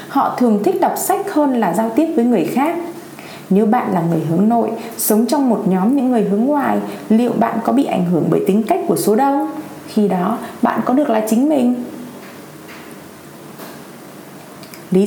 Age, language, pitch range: 20-39, Vietnamese, 205-275 Hz